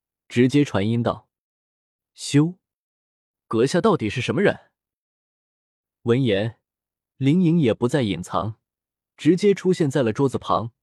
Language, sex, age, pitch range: Chinese, male, 20-39, 110-165 Hz